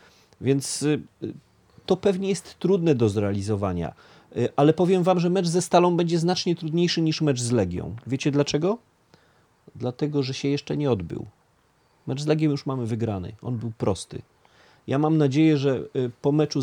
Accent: native